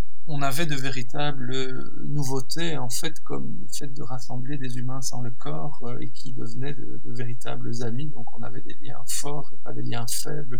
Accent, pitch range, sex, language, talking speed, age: French, 125-150 Hz, male, French, 205 wpm, 40-59